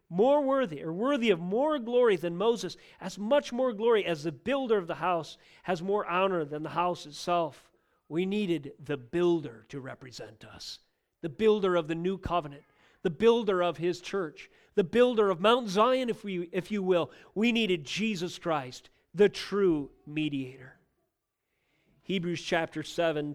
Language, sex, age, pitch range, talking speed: English, male, 40-59, 155-210 Hz, 165 wpm